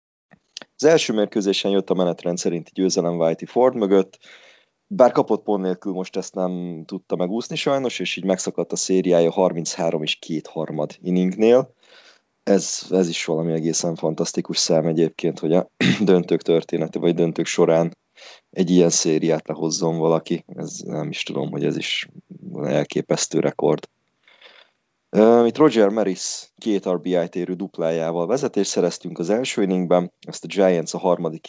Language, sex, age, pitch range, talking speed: Hungarian, male, 20-39, 85-100 Hz, 145 wpm